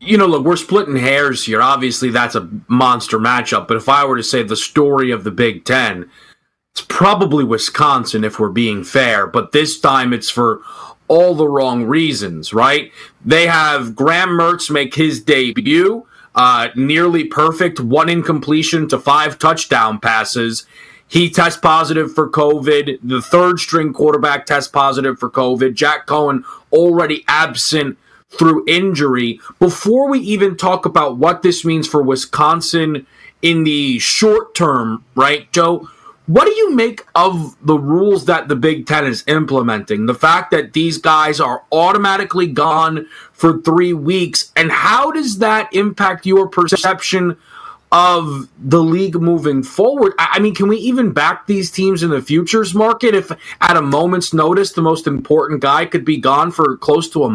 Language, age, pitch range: English, 30-49, 140-180 Hz